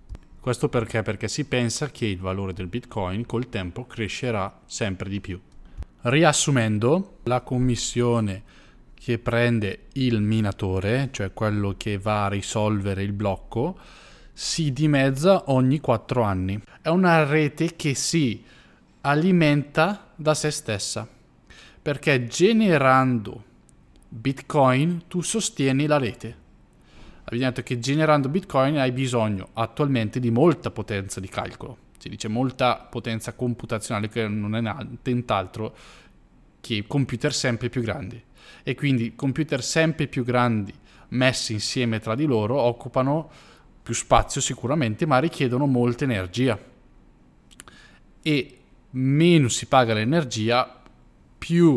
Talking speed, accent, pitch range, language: 120 wpm, native, 110-140 Hz, Italian